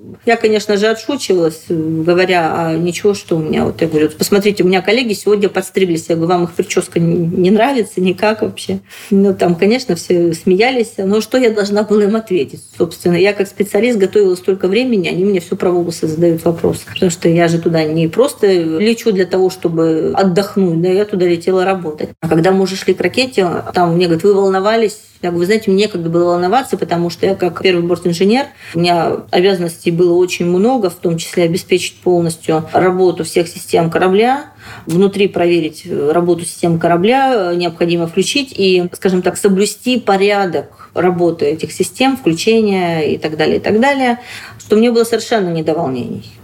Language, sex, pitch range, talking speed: Russian, female, 170-205 Hz, 180 wpm